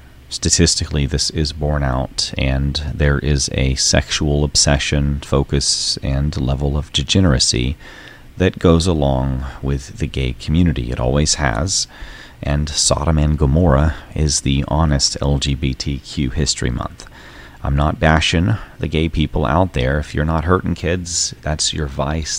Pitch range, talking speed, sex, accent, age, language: 65-80 Hz, 140 wpm, male, American, 30-49, English